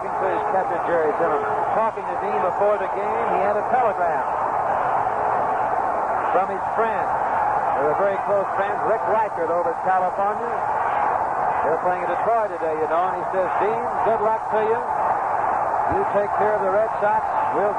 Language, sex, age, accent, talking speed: English, male, 60-79, American, 170 wpm